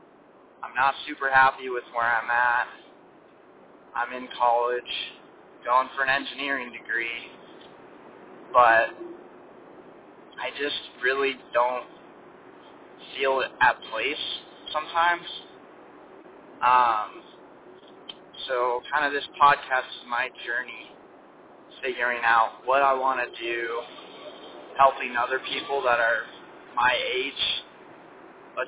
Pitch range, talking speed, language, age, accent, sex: 125-175 Hz, 105 wpm, English, 20-39, American, male